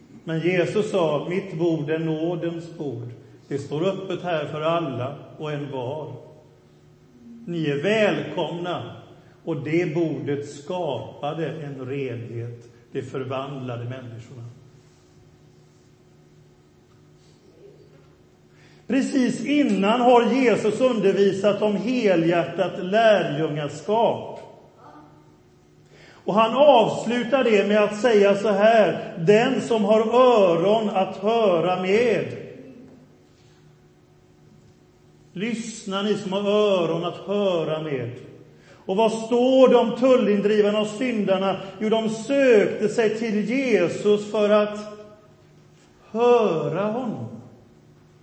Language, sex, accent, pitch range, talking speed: Swedish, male, native, 140-215 Hz, 95 wpm